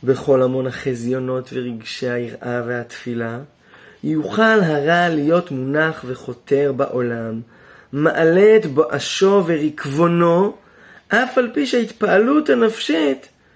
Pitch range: 130-200 Hz